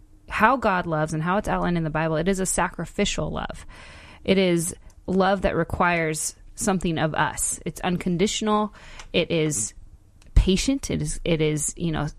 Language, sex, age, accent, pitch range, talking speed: English, female, 20-39, American, 155-190 Hz, 165 wpm